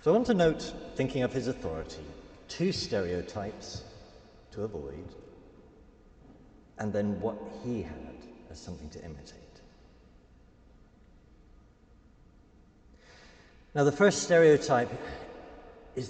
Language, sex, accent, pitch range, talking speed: English, male, British, 90-140 Hz, 100 wpm